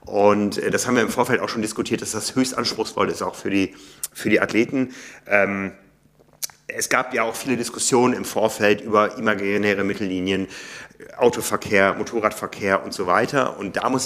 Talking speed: 165 wpm